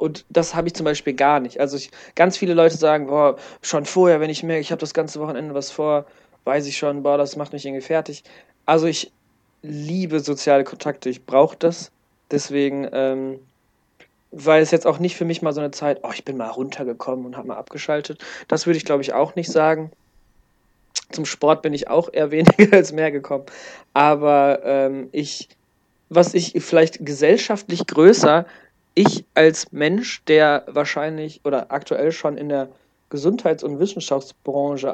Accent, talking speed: German, 180 wpm